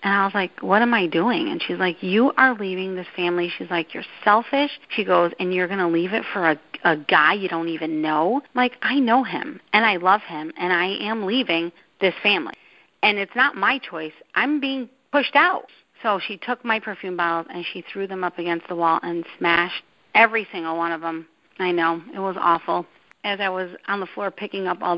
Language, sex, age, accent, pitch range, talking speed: English, female, 40-59, American, 170-215 Hz, 225 wpm